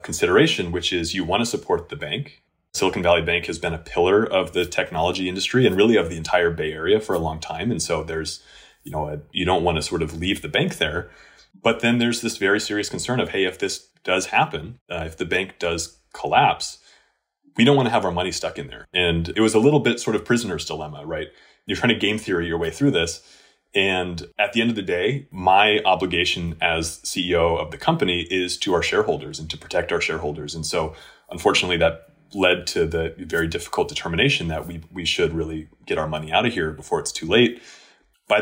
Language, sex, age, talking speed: English, male, 30-49, 225 wpm